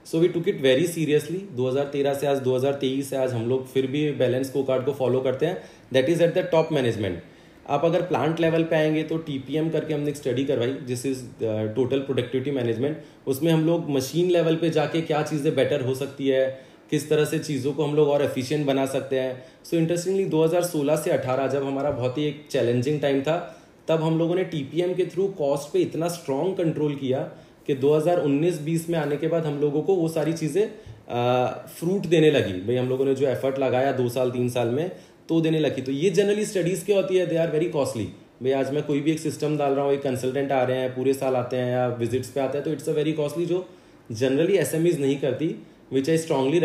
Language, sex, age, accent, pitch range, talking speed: Hindi, male, 30-49, native, 130-160 Hz, 230 wpm